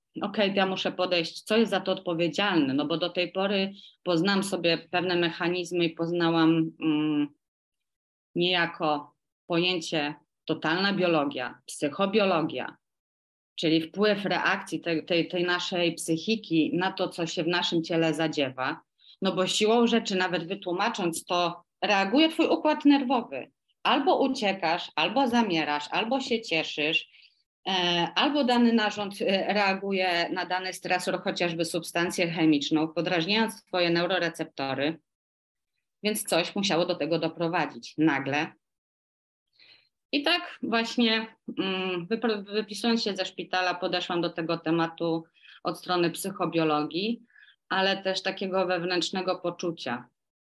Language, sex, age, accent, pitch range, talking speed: Polish, female, 30-49, native, 165-195 Hz, 120 wpm